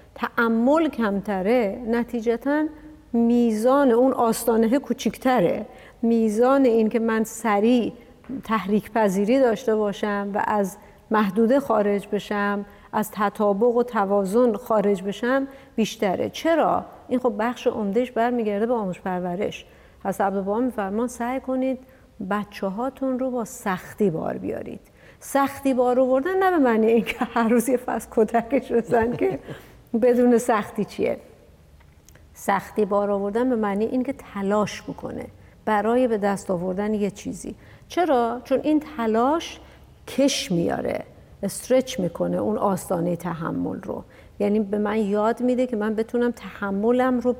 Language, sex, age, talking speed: Persian, female, 50-69, 125 wpm